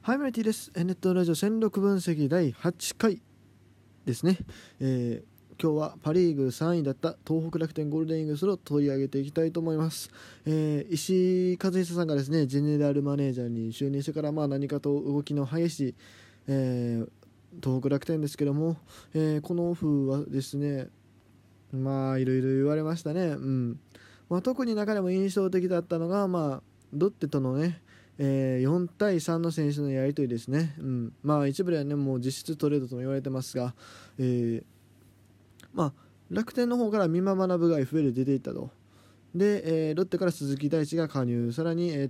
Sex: male